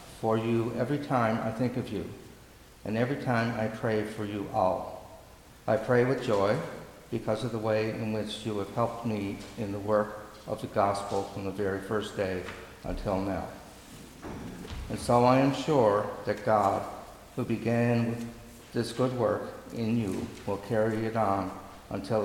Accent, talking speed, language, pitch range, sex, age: American, 165 wpm, English, 100-115 Hz, male, 60-79